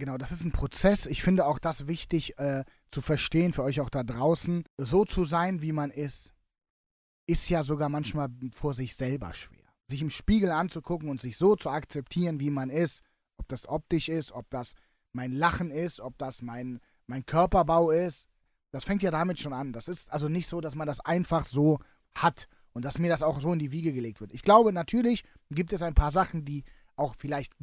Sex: male